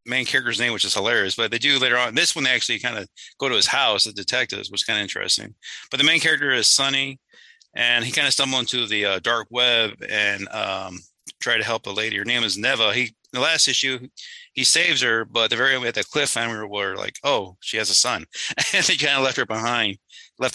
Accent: American